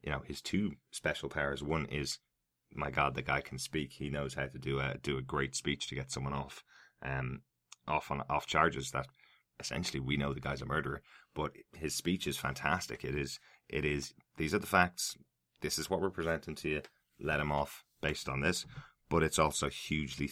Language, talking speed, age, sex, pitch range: English, 210 wpm, 30-49, male, 65-75 Hz